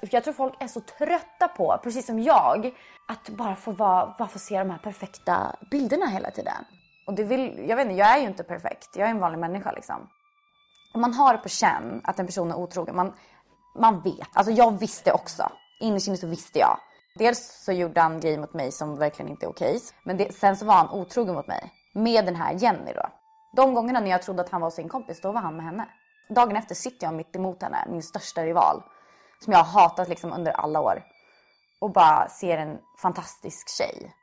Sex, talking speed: female, 210 wpm